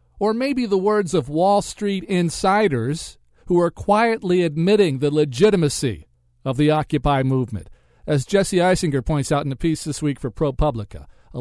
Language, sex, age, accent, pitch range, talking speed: English, male, 50-69, American, 120-180 Hz, 165 wpm